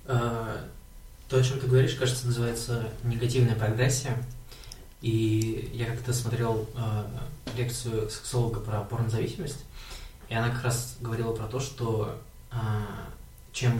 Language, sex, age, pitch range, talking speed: Russian, male, 20-39, 110-125 Hz, 115 wpm